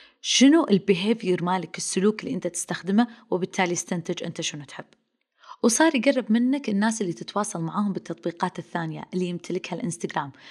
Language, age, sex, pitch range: Arabic, 20-39, female, 175-245 Hz